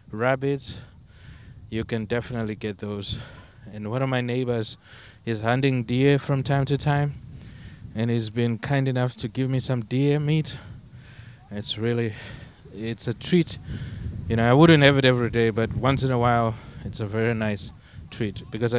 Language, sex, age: English, male, 20-39